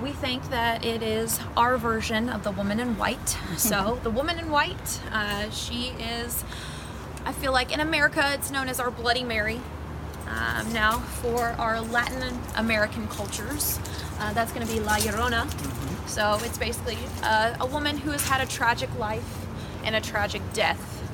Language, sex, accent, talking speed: English, female, American, 170 wpm